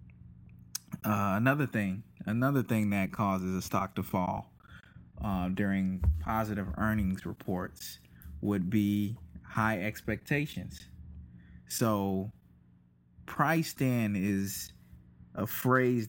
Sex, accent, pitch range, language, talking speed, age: male, American, 90-110 Hz, English, 95 wpm, 20-39